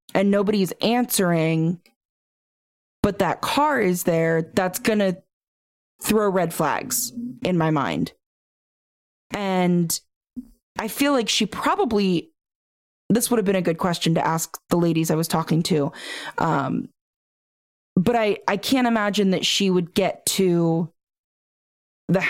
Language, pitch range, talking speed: English, 170-205 Hz, 135 wpm